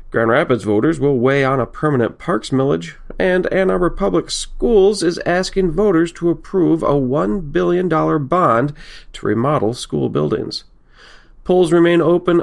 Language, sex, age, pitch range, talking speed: English, male, 40-59, 125-170 Hz, 150 wpm